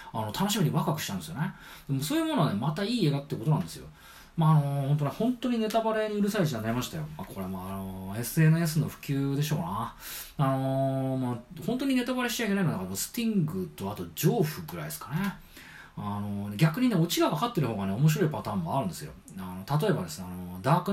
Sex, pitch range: male, 120-180 Hz